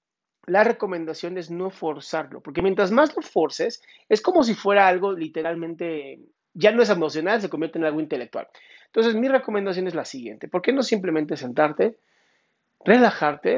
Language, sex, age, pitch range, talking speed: Spanish, male, 40-59, 160-225 Hz, 165 wpm